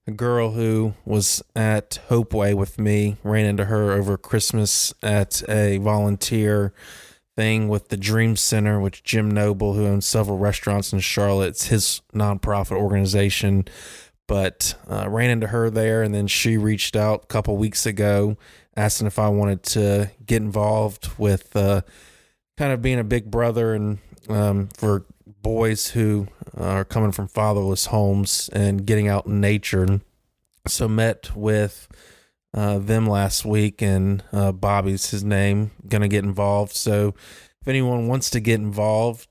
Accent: American